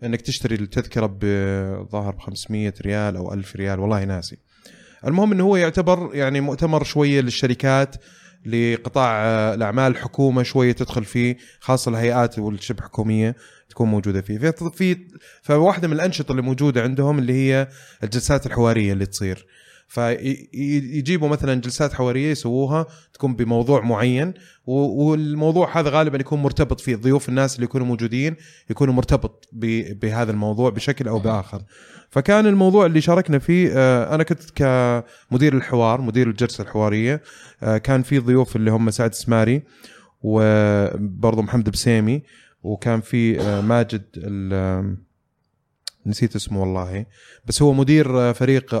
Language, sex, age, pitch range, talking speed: Arabic, male, 20-39, 110-140 Hz, 130 wpm